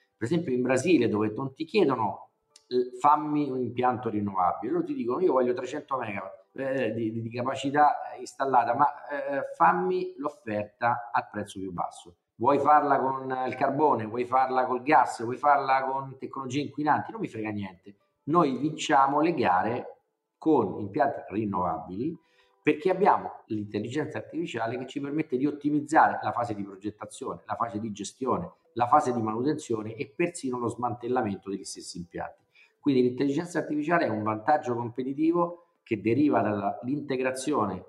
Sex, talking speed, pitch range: male, 155 wpm, 110-150 Hz